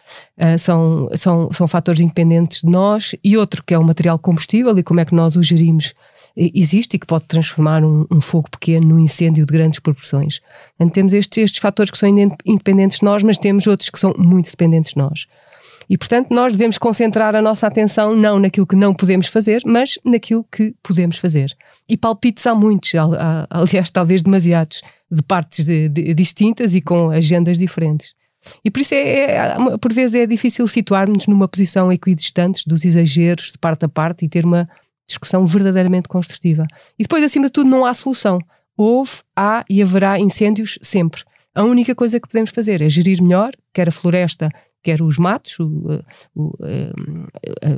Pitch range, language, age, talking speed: 165-215 Hz, Portuguese, 30-49, 175 wpm